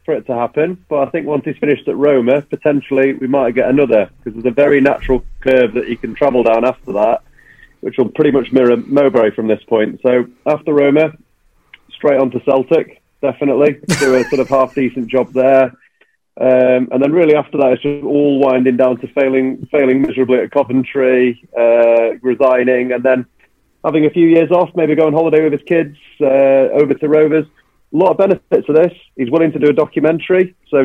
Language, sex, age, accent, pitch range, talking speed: English, male, 30-49, British, 130-155 Hz, 200 wpm